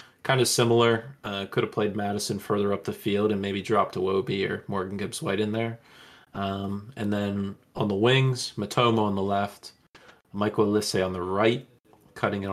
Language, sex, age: English, male, 20-39